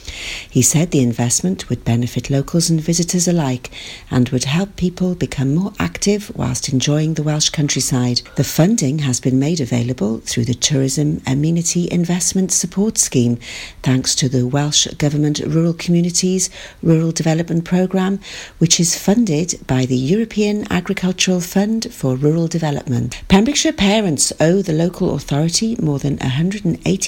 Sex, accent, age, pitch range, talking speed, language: female, British, 50-69, 130-180 Hz, 140 wpm, English